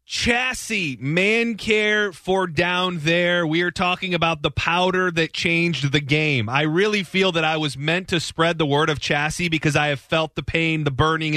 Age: 30-49